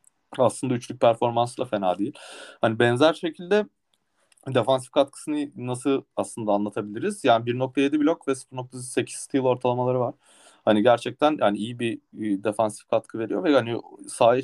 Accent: native